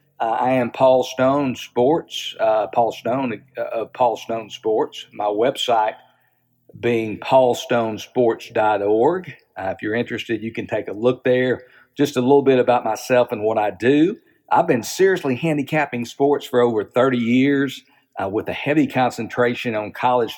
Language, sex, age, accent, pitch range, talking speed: English, male, 50-69, American, 115-135 Hz, 155 wpm